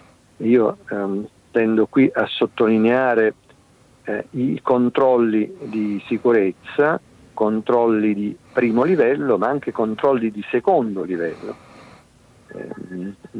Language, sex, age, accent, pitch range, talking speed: Italian, male, 50-69, native, 105-125 Hz, 100 wpm